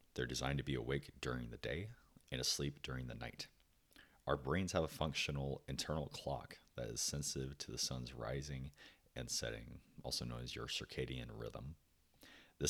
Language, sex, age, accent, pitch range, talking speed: English, male, 30-49, American, 65-75 Hz, 170 wpm